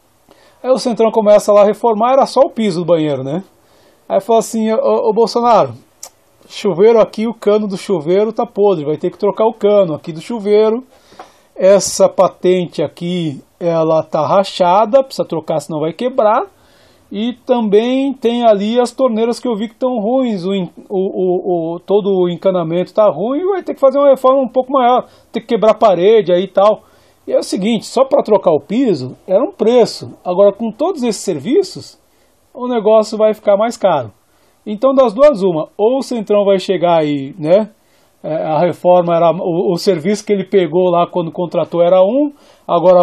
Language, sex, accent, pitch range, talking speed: Portuguese, male, Brazilian, 180-240 Hz, 185 wpm